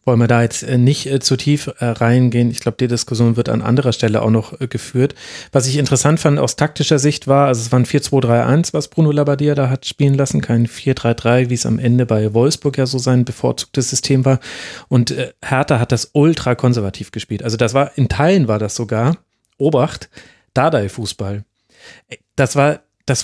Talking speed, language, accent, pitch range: 190 wpm, German, German, 120-145 Hz